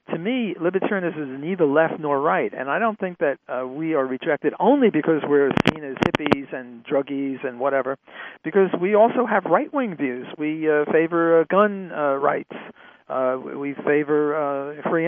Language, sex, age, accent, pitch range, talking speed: English, male, 50-69, American, 140-175 Hz, 185 wpm